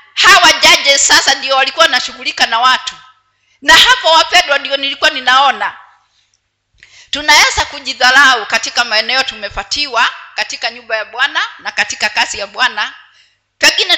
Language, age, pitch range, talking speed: Swahili, 50-69, 230-310 Hz, 120 wpm